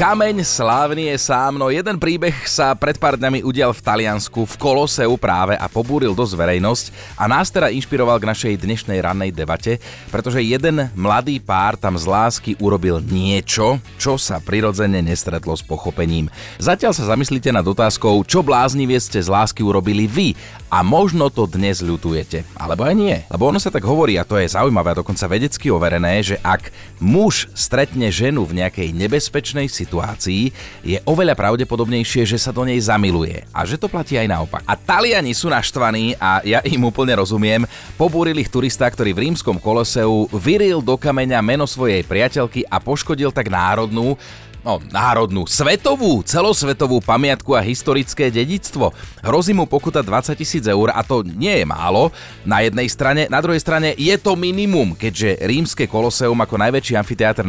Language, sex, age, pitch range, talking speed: Slovak, male, 30-49, 100-140 Hz, 170 wpm